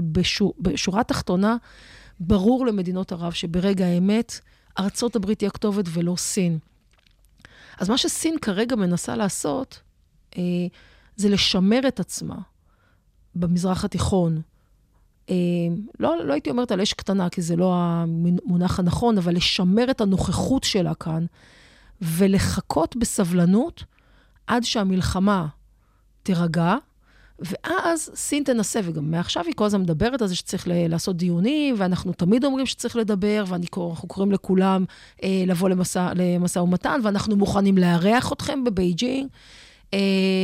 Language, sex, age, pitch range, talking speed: Hebrew, female, 30-49, 180-215 Hz, 115 wpm